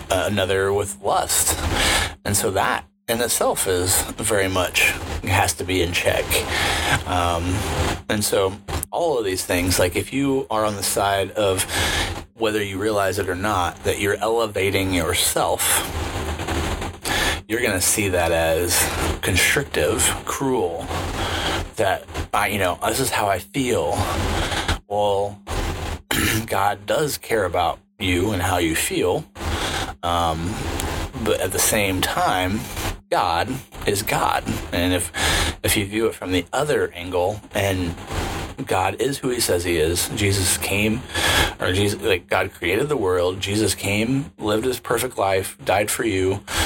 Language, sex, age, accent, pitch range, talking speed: English, male, 30-49, American, 85-100 Hz, 145 wpm